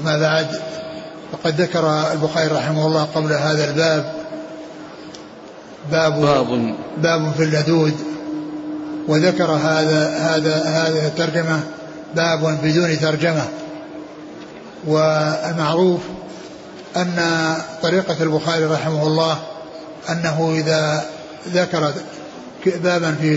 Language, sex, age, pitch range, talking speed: Arabic, male, 60-79, 160-170 Hz, 85 wpm